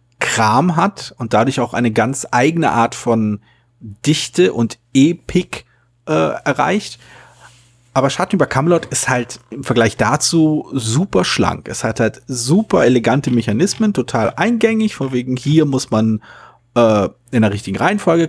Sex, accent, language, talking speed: male, German, German, 140 wpm